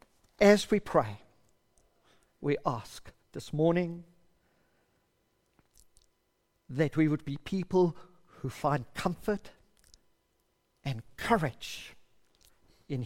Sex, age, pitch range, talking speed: male, 50-69, 125-180 Hz, 85 wpm